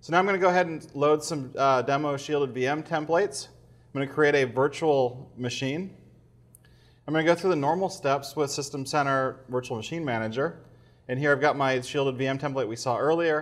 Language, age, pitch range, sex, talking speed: English, 30-49, 125-150 Hz, male, 210 wpm